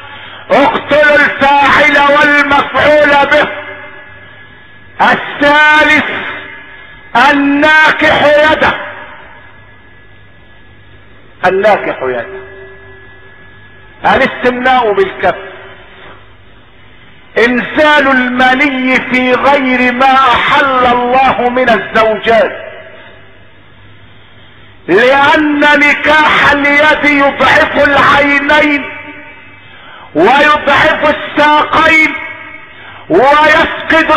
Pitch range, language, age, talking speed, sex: 250-325 Hz, Arabic, 50-69, 50 wpm, male